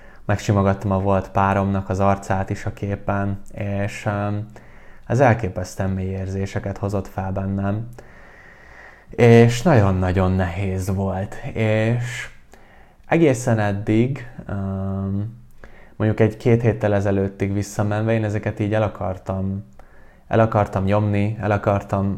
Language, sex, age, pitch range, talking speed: Hungarian, male, 20-39, 95-110 Hz, 110 wpm